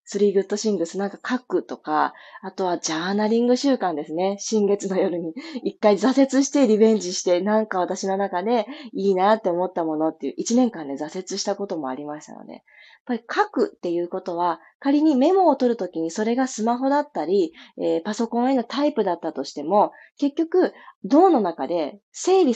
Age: 20-39